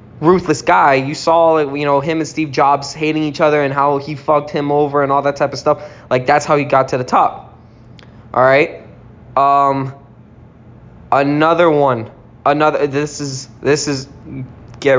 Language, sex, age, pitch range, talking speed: English, male, 20-39, 120-155 Hz, 170 wpm